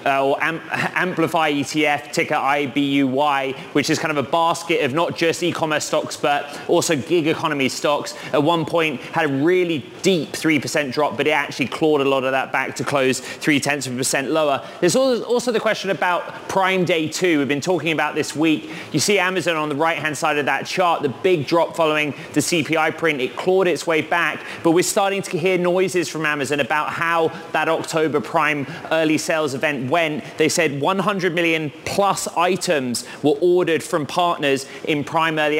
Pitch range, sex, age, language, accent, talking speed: 145-170 Hz, male, 20-39, English, British, 185 wpm